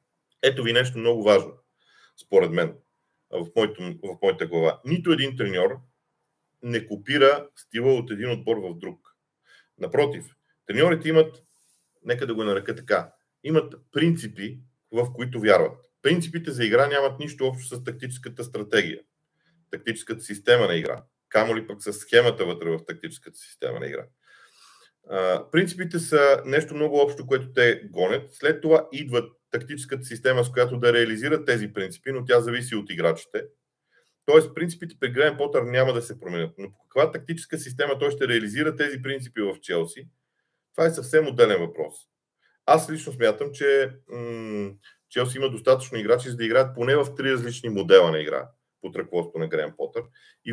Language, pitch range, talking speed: Bulgarian, 120-155 Hz, 160 wpm